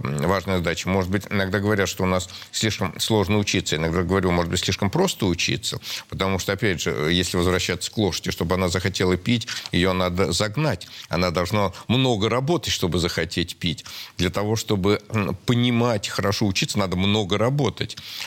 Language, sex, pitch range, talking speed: Russian, male, 95-125 Hz, 165 wpm